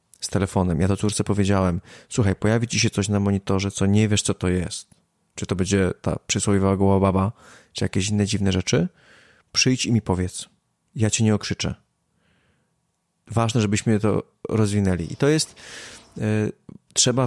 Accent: native